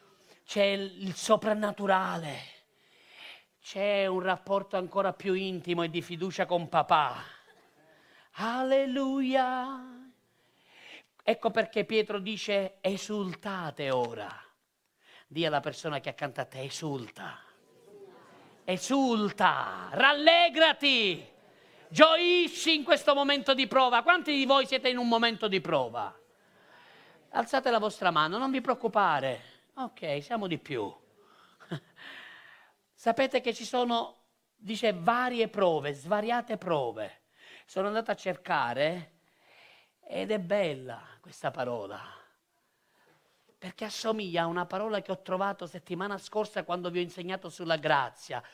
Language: Italian